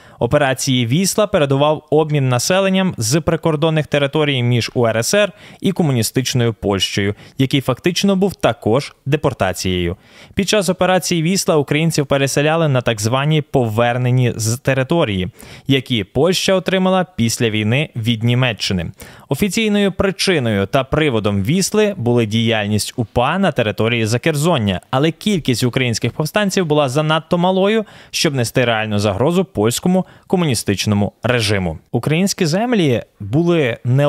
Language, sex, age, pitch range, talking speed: Ukrainian, male, 20-39, 115-165 Hz, 115 wpm